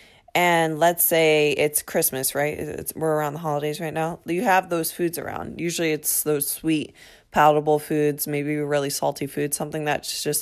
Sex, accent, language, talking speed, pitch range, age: female, American, English, 180 wpm, 145-170 Hz, 20-39